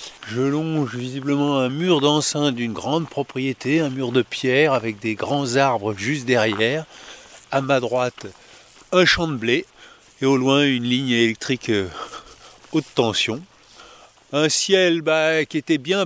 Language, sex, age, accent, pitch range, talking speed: French, male, 50-69, French, 135-180 Hz, 150 wpm